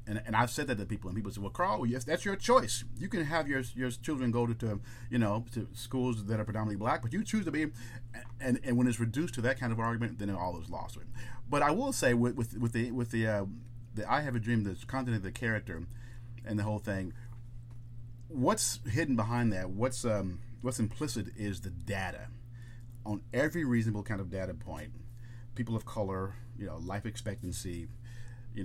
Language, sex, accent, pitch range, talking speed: English, male, American, 110-125 Hz, 220 wpm